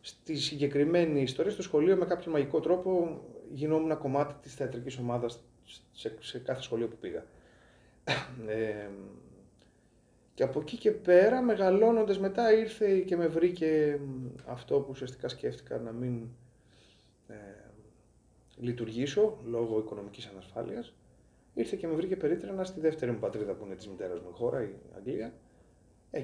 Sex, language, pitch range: male, Greek, 115-175 Hz